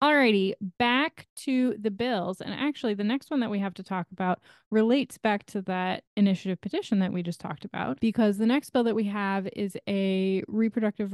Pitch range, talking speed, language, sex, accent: 185-230 Hz, 200 wpm, English, female, American